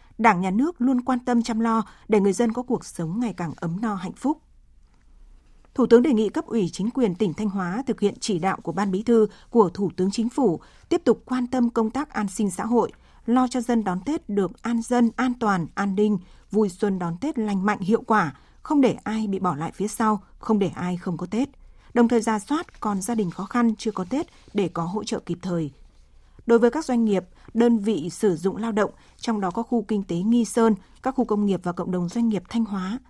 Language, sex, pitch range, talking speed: Vietnamese, female, 195-235 Hz, 245 wpm